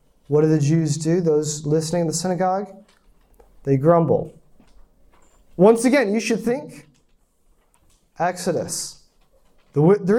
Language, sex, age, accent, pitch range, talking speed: English, male, 30-49, American, 160-235 Hz, 110 wpm